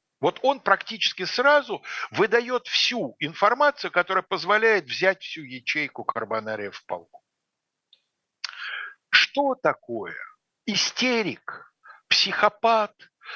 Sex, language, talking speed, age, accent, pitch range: male, Russian, 85 wpm, 60-79, native, 145-210 Hz